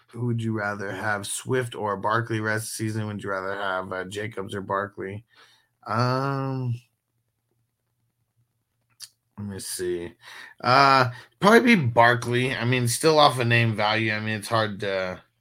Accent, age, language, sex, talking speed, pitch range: American, 30-49, English, male, 150 wpm, 100-125 Hz